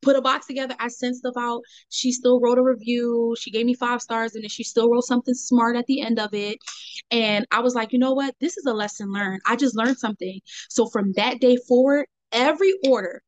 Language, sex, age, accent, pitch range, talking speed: English, female, 20-39, American, 200-250 Hz, 240 wpm